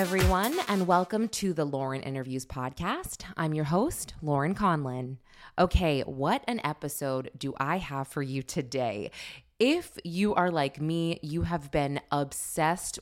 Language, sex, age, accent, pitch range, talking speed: English, female, 20-39, American, 135-175 Hz, 150 wpm